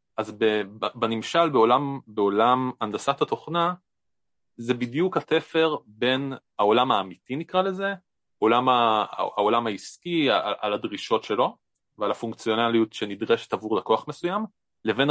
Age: 30-49